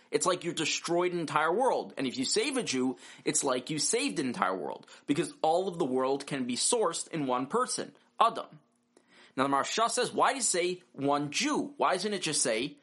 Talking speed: 220 wpm